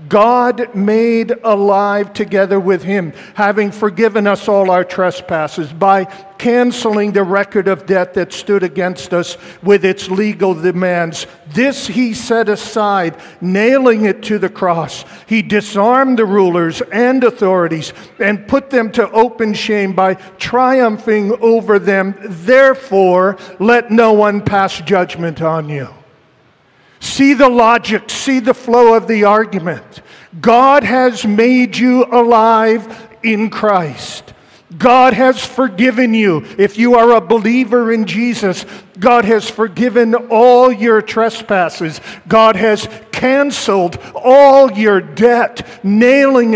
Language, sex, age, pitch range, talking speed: English, male, 50-69, 195-240 Hz, 130 wpm